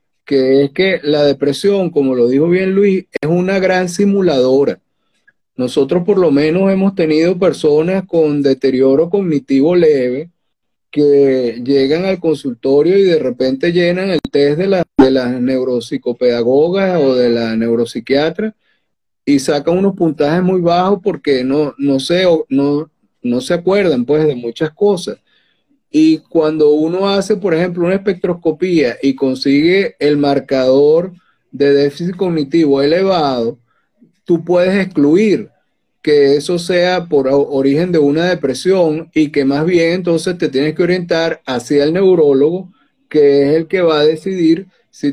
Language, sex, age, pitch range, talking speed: Spanish, male, 30-49, 140-180 Hz, 145 wpm